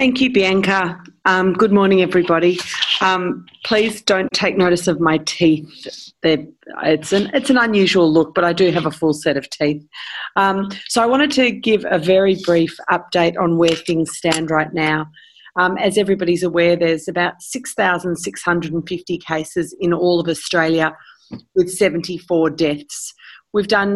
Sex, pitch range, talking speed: female, 165-200 Hz, 155 wpm